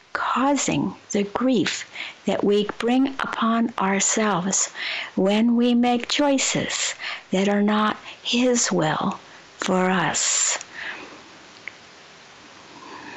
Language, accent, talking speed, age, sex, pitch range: English, American, 85 wpm, 60-79, female, 195-245 Hz